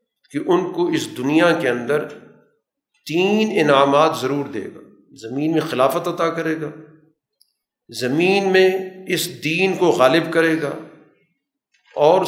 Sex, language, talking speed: male, Urdu, 130 wpm